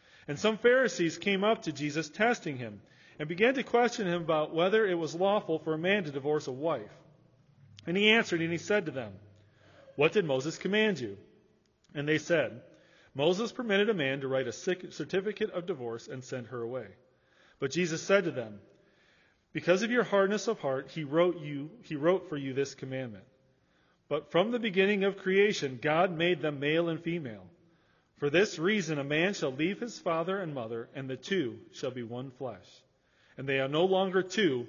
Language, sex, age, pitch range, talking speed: English, male, 40-59, 135-190 Hz, 190 wpm